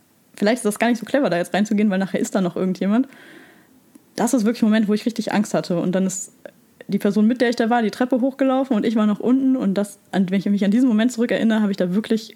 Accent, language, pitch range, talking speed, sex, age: German, German, 195-235 Hz, 280 wpm, female, 20-39